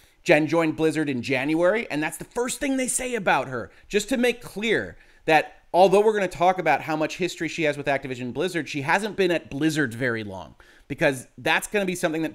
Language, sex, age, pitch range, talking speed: English, male, 30-49, 130-170 Hz, 230 wpm